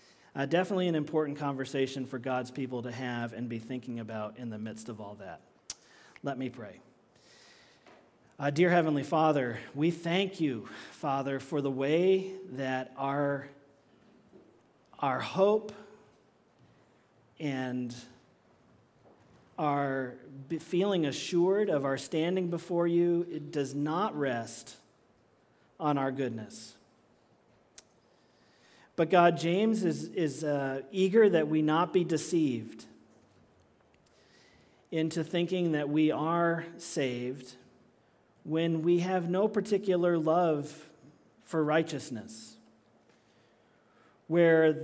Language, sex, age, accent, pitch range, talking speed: English, male, 40-59, American, 130-175 Hz, 110 wpm